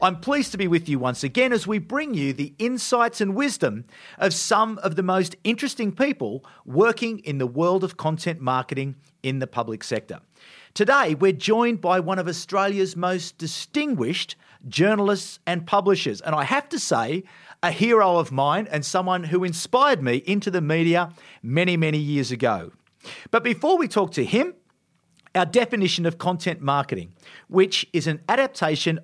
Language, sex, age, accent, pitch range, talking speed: English, male, 40-59, Australian, 150-215 Hz, 170 wpm